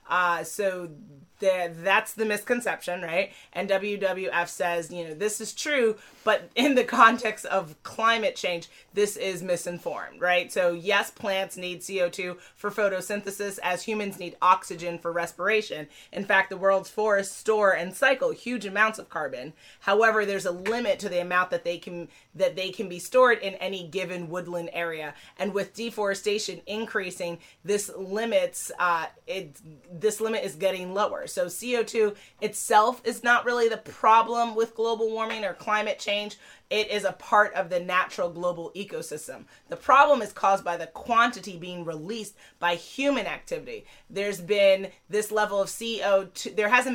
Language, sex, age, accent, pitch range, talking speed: English, female, 30-49, American, 175-220 Hz, 160 wpm